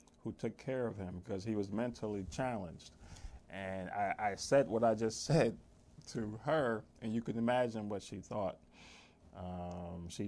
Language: English